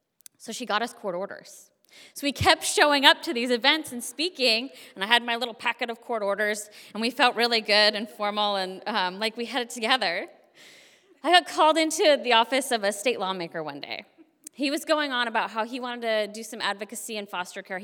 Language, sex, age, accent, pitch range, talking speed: English, female, 20-39, American, 190-250 Hz, 220 wpm